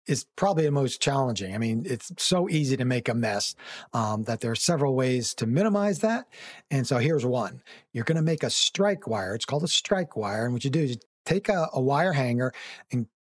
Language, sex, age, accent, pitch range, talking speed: English, male, 50-69, American, 120-155 Hz, 230 wpm